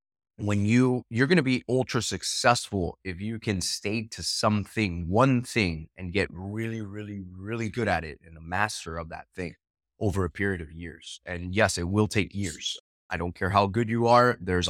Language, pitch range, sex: English, 90-115 Hz, male